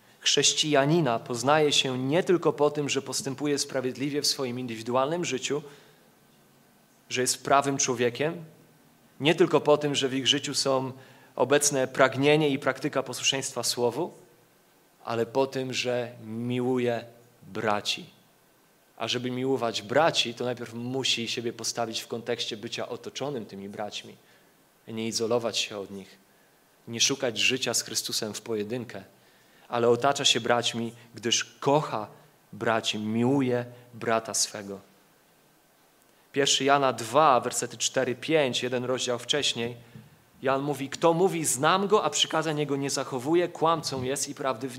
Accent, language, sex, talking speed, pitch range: native, Polish, male, 135 wpm, 120-145 Hz